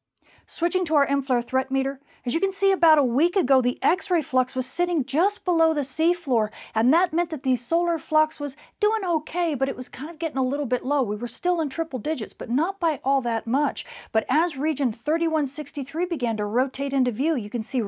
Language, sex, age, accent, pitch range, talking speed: English, female, 40-59, American, 245-310 Hz, 225 wpm